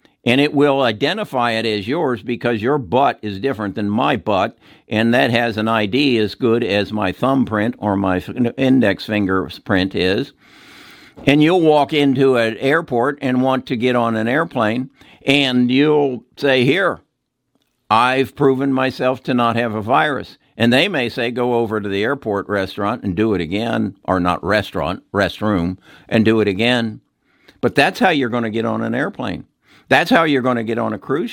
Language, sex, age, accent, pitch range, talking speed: English, male, 60-79, American, 110-140 Hz, 185 wpm